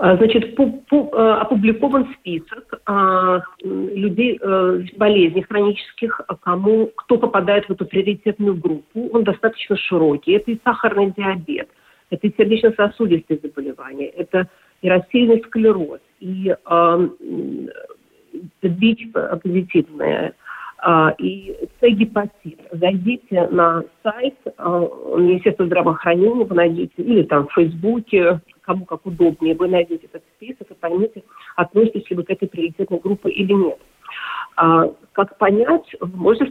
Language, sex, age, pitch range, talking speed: Russian, female, 50-69, 175-225 Hz, 120 wpm